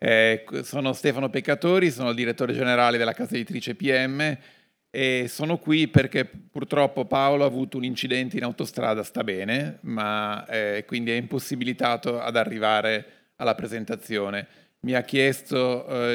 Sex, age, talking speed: male, 40-59, 145 wpm